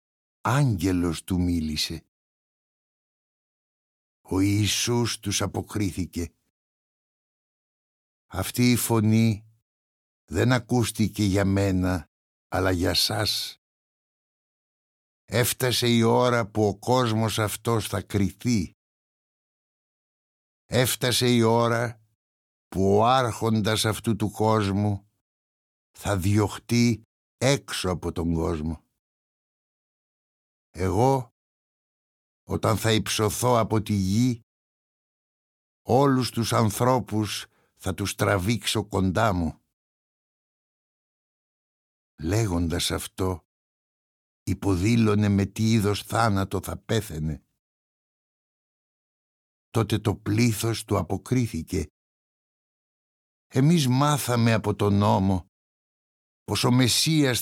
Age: 60-79